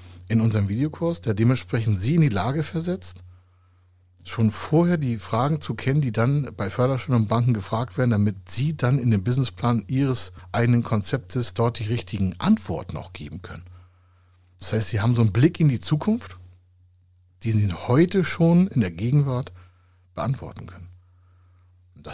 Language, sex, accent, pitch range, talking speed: German, male, German, 90-130 Hz, 165 wpm